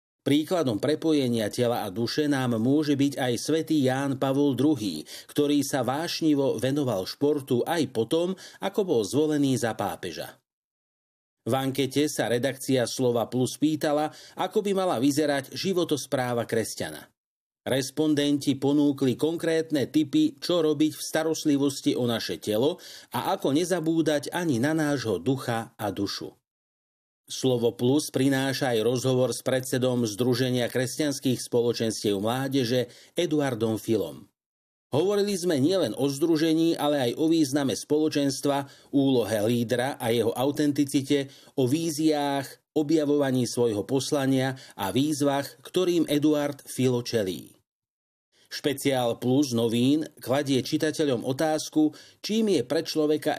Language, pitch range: Slovak, 125-150 Hz